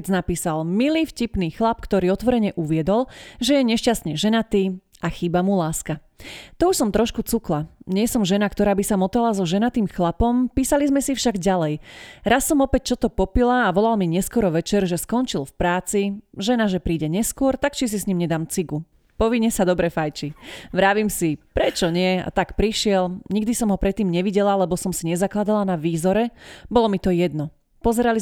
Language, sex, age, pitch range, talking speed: Slovak, female, 30-49, 175-225 Hz, 185 wpm